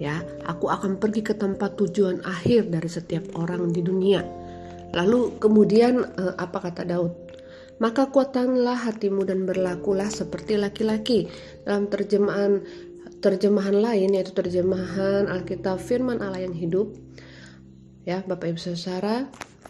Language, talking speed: Indonesian, 120 wpm